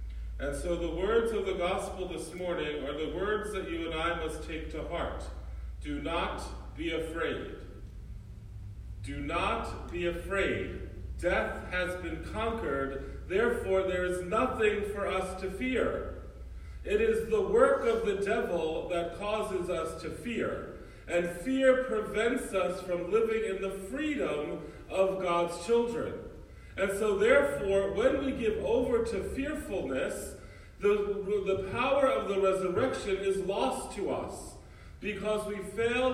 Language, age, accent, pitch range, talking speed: English, 40-59, American, 170-215 Hz, 145 wpm